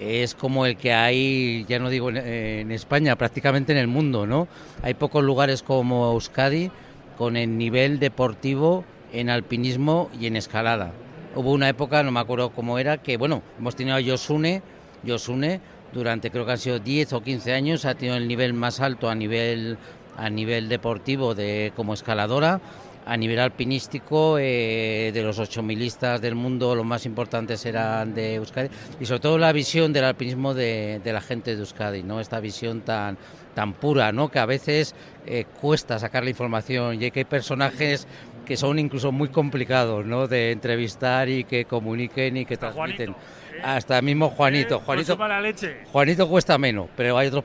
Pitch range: 120-140 Hz